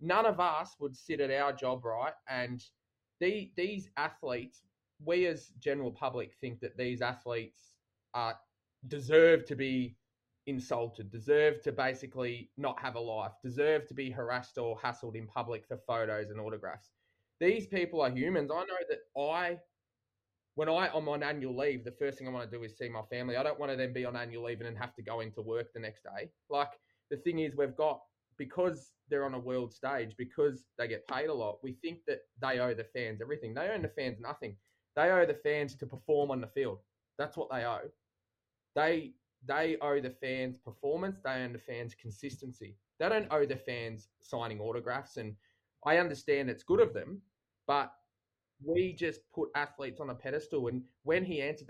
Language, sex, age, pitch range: English, male, 20-39, 115-150 Hz